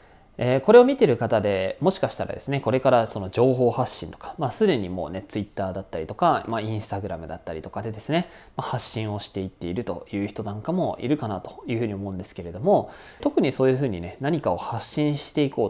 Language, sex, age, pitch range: Japanese, male, 20-39, 100-155 Hz